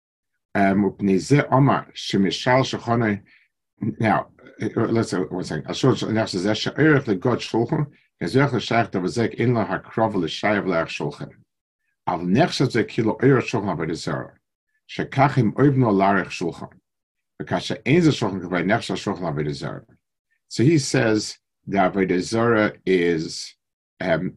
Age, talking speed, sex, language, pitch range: 50-69, 45 wpm, male, English, 95-135 Hz